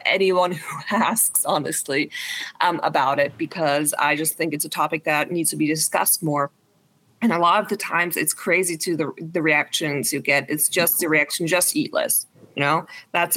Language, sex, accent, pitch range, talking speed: English, female, American, 150-180 Hz, 195 wpm